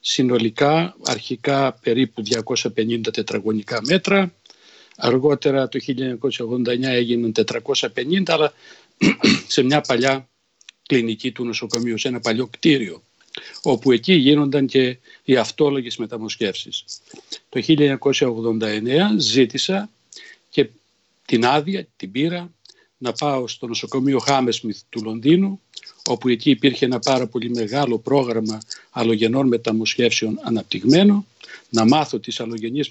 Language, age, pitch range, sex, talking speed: Greek, 60-79, 115-150 Hz, male, 110 wpm